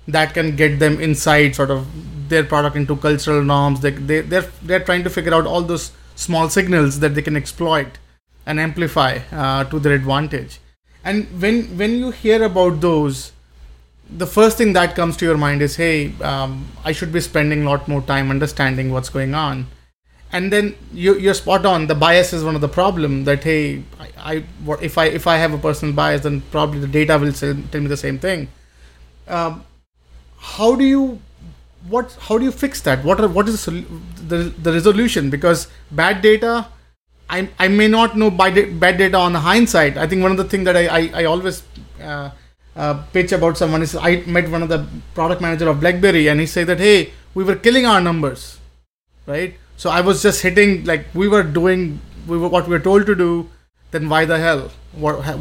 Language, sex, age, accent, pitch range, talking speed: English, male, 30-49, Indian, 145-185 Hz, 205 wpm